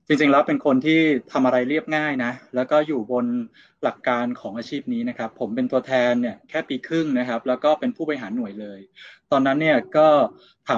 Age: 20-39